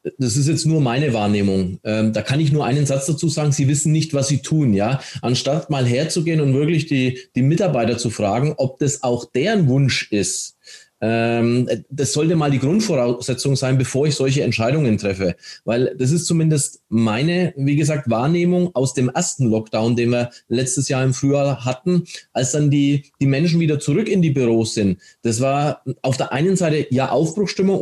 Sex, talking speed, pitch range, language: male, 185 wpm, 130-160 Hz, German